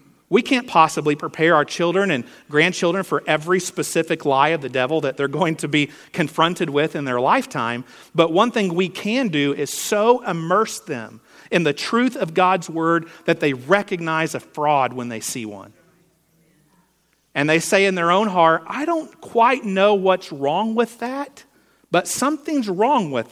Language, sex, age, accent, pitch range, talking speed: English, male, 40-59, American, 140-185 Hz, 180 wpm